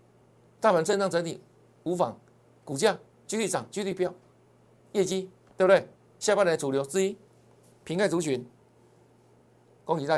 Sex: male